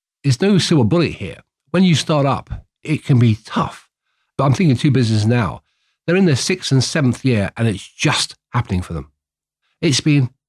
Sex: male